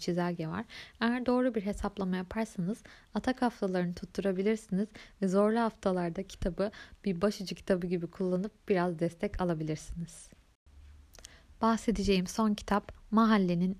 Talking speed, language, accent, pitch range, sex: 115 wpm, Turkish, native, 180-225 Hz, female